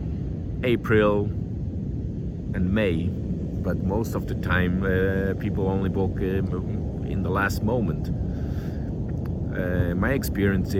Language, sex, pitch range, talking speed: English, male, 90-100 Hz, 110 wpm